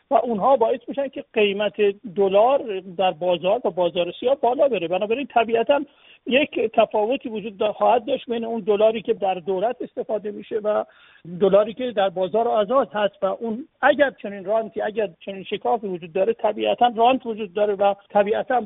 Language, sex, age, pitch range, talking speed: Persian, male, 50-69, 190-240 Hz, 175 wpm